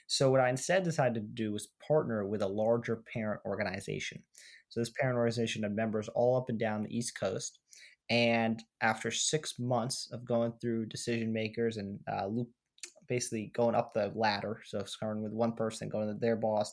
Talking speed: 185 wpm